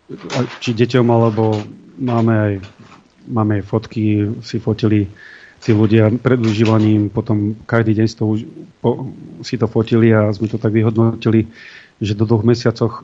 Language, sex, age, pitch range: Slovak, male, 30-49, 110-120 Hz